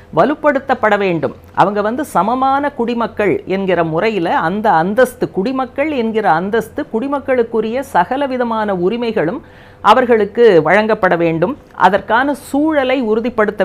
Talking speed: 95 wpm